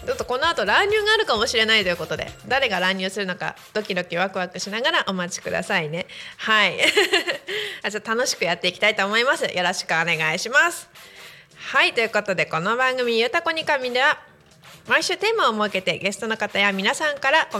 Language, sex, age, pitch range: Japanese, female, 30-49, 185-270 Hz